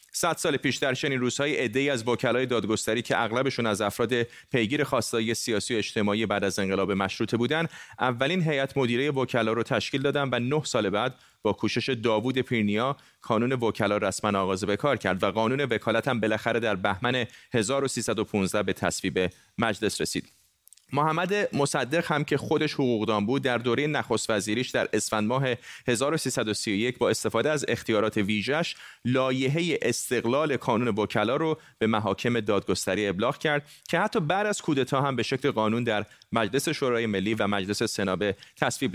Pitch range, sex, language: 110-140 Hz, male, Persian